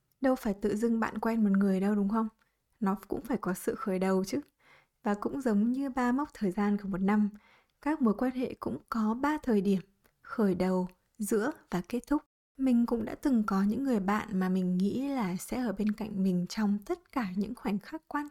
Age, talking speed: 20-39, 225 wpm